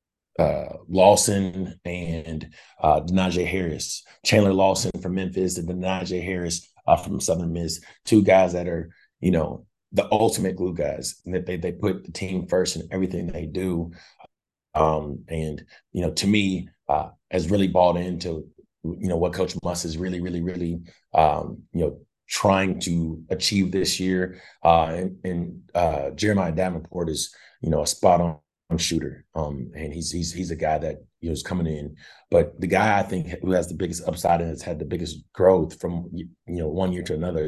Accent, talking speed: American, 185 wpm